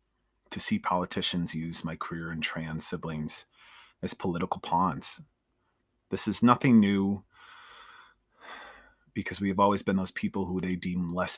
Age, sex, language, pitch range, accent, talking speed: 30-49, male, English, 90-110 Hz, American, 140 wpm